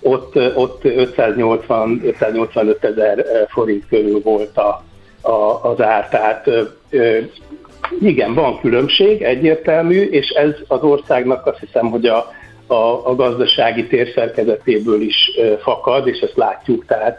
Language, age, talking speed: Hungarian, 60-79, 125 wpm